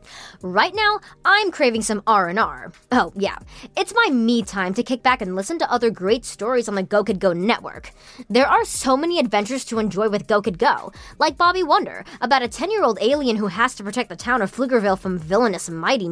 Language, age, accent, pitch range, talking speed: English, 20-39, American, 195-275 Hz, 195 wpm